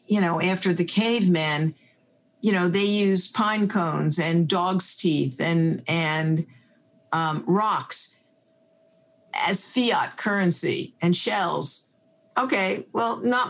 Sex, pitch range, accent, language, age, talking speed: female, 160-185 Hz, American, English, 50-69, 115 wpm